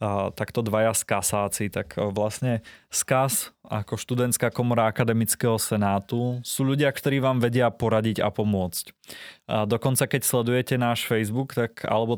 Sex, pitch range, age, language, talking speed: male, 105-125 Hz, 20-39, Czech, 135 wpm